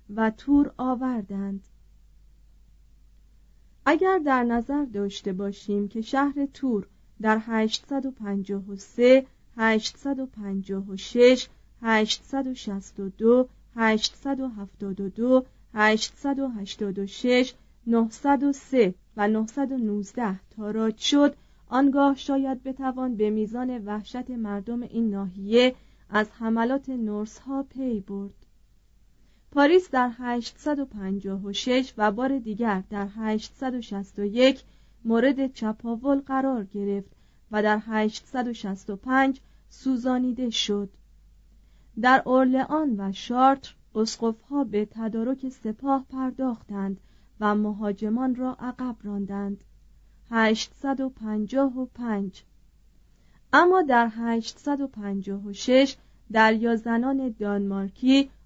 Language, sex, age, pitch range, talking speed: Persian, female, 40-59, 205-260 Hz, 75 wpm